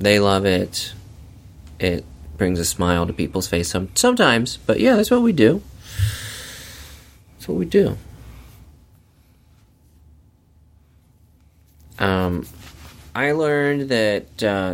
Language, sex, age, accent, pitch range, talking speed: English, male, 30-49, American, 85-110 Hz, 105 wpm